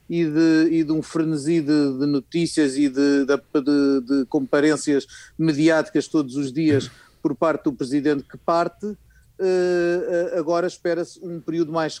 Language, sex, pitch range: Portuguese, male, 145-170 Hz